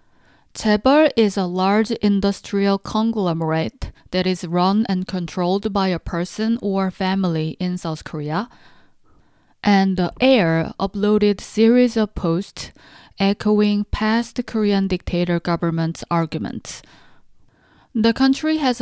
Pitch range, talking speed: 175-220 Hz, 110 wpm